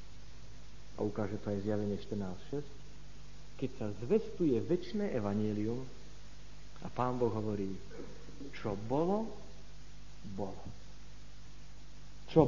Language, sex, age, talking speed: Slovak, male, 50-69, 90 wpm